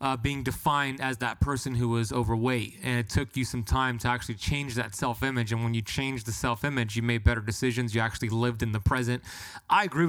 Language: English